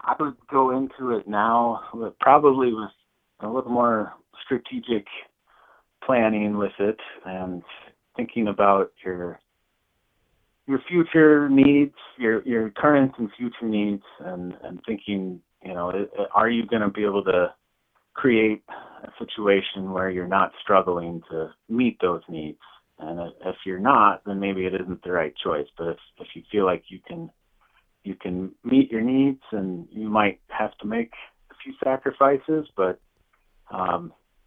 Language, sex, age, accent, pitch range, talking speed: English, male, 30-49, American, 95-125 Hz, 155 wpm